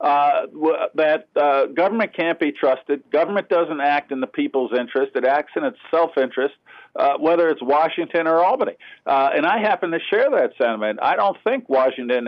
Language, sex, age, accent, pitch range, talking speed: English, male, 50-69, American, 130-160 Hz, 180 wpm